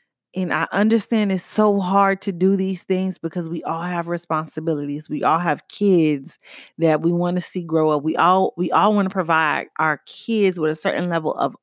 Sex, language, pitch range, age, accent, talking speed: female, English, 155-205 Hz, 30-49, American, 205 wpm